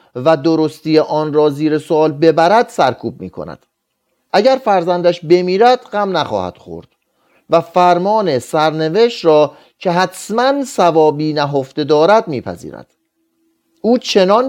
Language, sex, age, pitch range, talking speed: Persian, male, 40-59, 155-220 Hz, 115 wpm